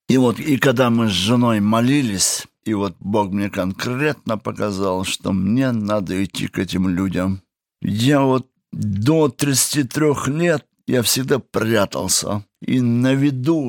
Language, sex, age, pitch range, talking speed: Russian, male, 50-69, 105-140 Hz, 140 wpm